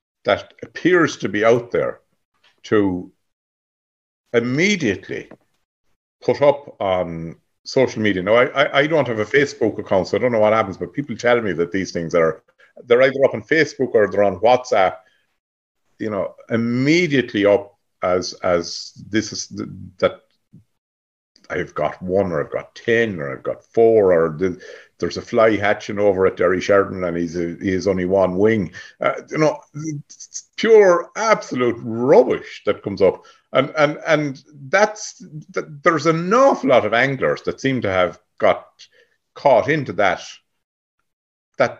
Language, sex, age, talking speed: English, male, 50-69, 160 wpm